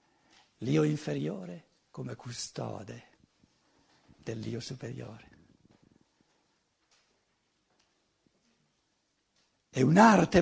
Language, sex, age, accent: Italian, male, 60-79, native